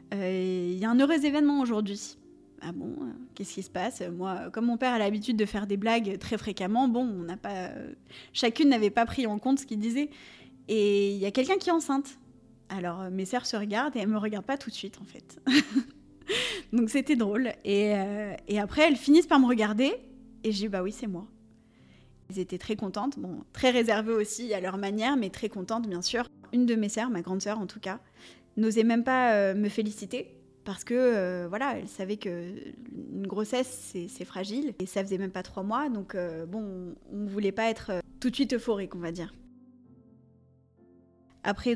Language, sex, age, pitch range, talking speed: French, female, 20-39, 190-240 Hz, 215 wpm